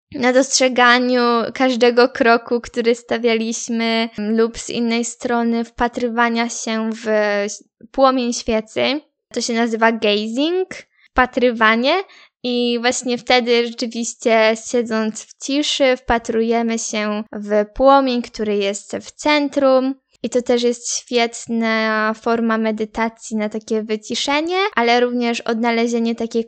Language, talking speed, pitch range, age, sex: Polish, 110 wpm, 225-260 Hz, 10-29, female